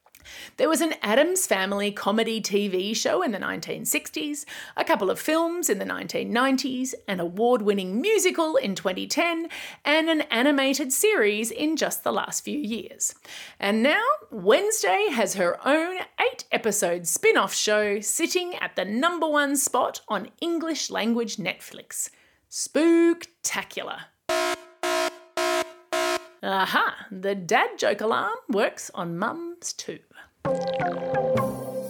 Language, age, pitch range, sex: English, 30-49, 215-335 Hz, female